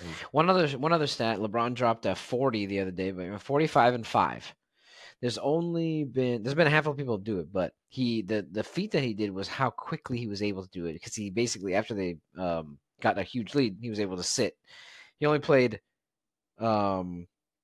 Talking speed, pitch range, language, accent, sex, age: 220 wpm, 100-130 Hz, English, American, male, 30-49